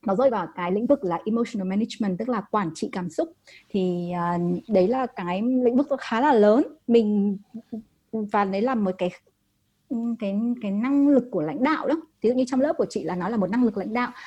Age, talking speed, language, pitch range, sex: 20-39, 225 wpm, Vietnamese, 185-255 Hz, female